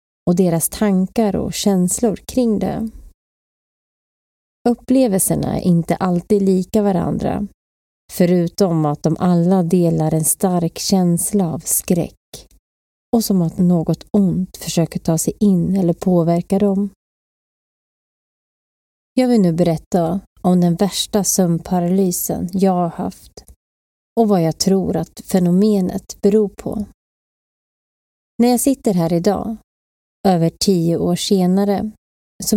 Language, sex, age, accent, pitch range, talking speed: Swedish, female, 30-49, native, 165-205 Hz, 120 wpm